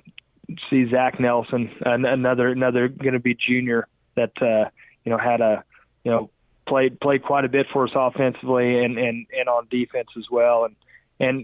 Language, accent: English, American